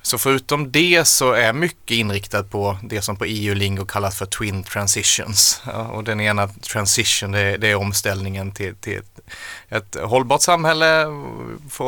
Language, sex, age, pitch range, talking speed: Swedish, male, 30-49, 100-115 Hz, 170 wpm